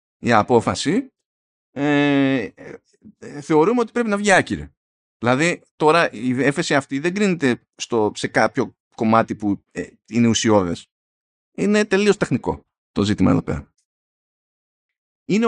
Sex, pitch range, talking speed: male, 110-170 Hz, 110 wpm